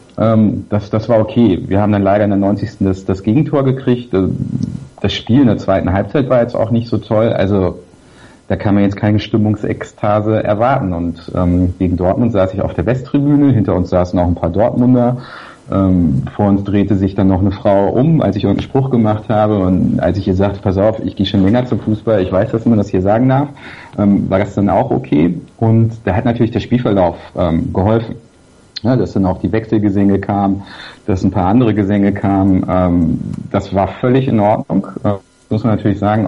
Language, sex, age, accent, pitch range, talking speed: German, male, 50-69, German, 95-115 Hz, 205 wpm